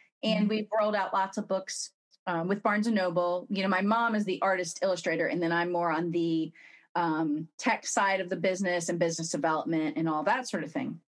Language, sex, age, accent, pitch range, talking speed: English, female, 30-49, American, 175-225 Hz, 220 wpm